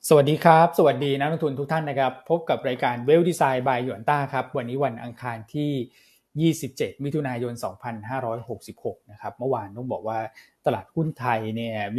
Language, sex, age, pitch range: Thai, male, 20-39, 115-140 Hz